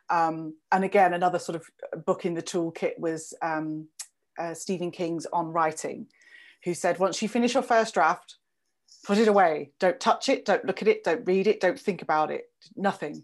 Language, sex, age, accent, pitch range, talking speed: English, female, 30-49, British, 160-200 Hz, 195 wpm